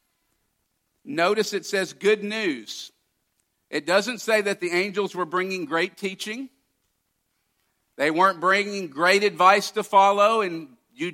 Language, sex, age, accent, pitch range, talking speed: English, male, 50-69, American, 180-210 Hz, 130 wpm